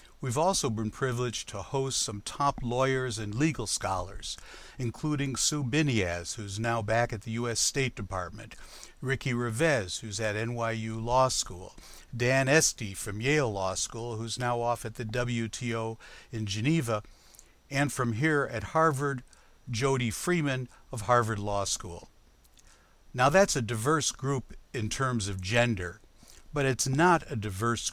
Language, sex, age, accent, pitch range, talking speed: English, male, 60-79, American, 110-135 Hz, 150 wpm